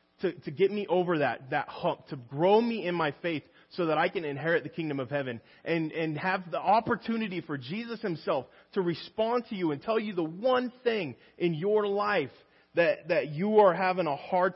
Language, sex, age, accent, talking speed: English, male, 20-39, American, 210 wpm